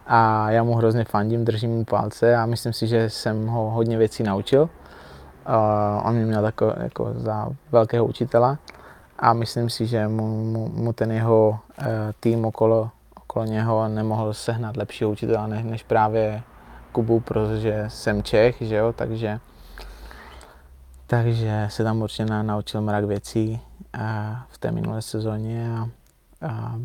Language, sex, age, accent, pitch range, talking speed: Czech, male, 20-39, native, 110-120 Hz, 155 wpm